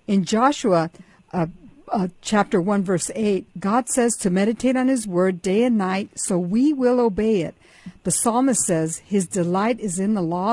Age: 60-79